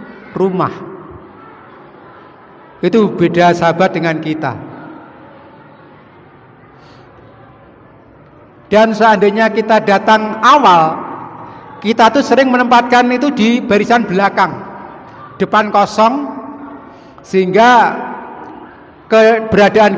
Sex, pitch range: male, 165-210 Hz